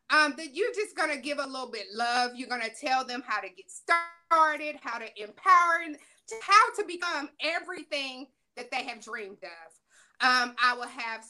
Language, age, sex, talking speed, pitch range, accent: English, 30-49, female, 200 wpm, 255-330 Hz, American